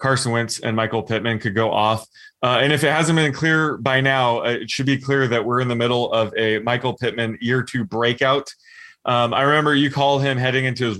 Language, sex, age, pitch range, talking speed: English, male, 20-39, 115-140 Hz, 230 wpm